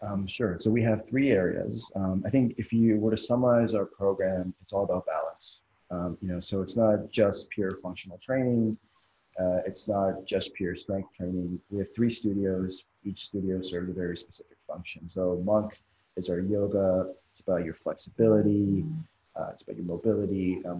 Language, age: English, 30-49